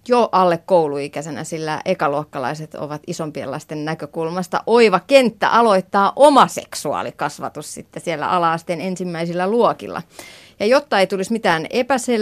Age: 30-49